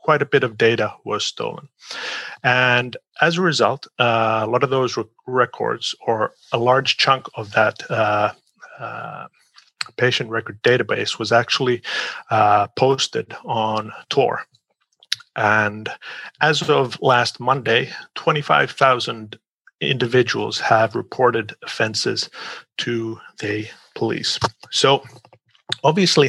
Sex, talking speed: male, 110 wpm